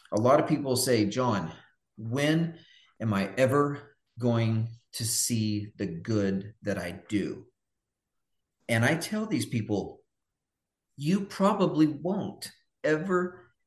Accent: American